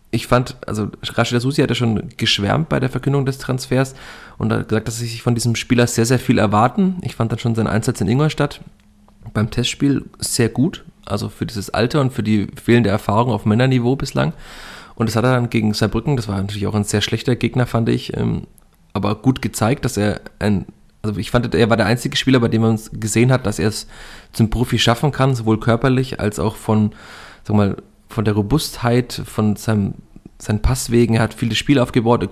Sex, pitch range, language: male, 105-120 Hz, German